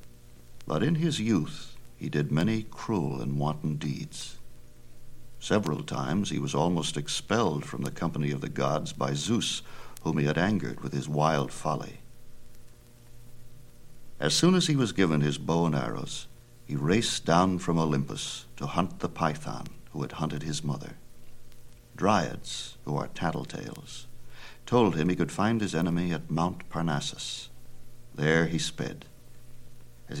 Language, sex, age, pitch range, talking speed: Italian, male, 60-79, 75-120 Hz, 150 wpm